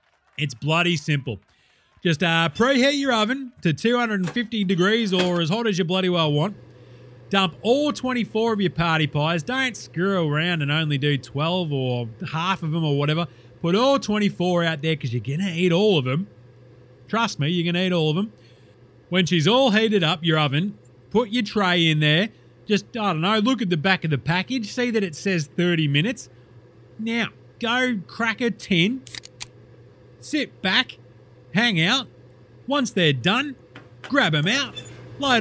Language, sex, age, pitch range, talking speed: English, male, 30-49, 160-210 Hz, 180 wpm